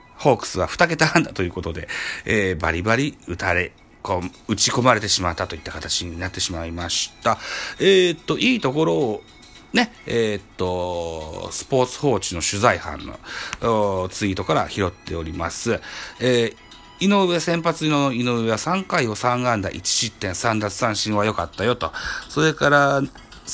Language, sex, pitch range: Japanese, male, 95-135 Hz